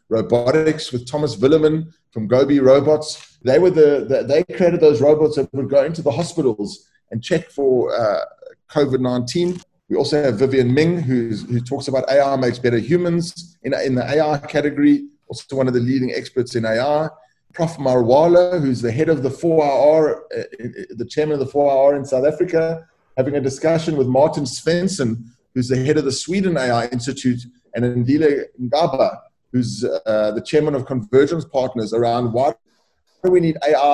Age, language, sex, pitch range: 30-49, English, male, 125-155 Hz